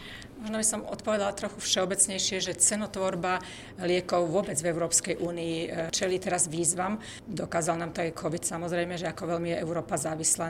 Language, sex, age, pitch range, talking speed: Czech, female, 40-59, 165-190 Hz, 160 wpm